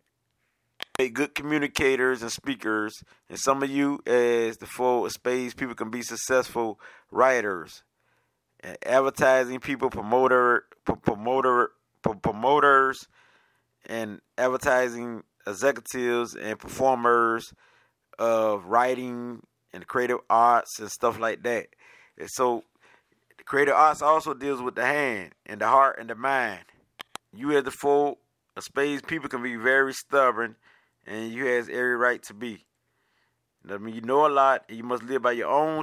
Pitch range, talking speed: 115-140 Hz, 140 wpm